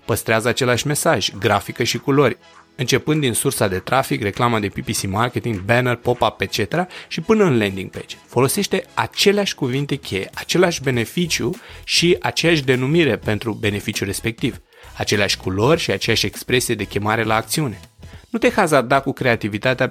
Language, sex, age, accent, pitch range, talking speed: Romanian, male, 30-49, native, 105-140 Hz, 150 wpm